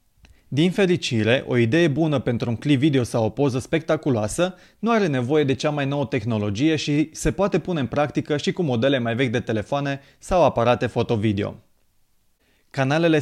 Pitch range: 120-160 Hz